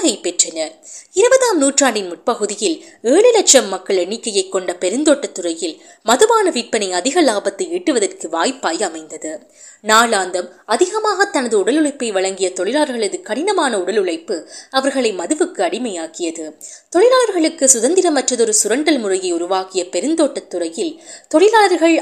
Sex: female